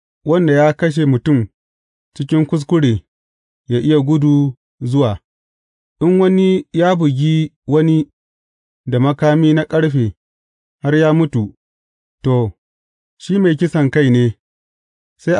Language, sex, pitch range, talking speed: English, male, 110-155 Hz, 110 wpm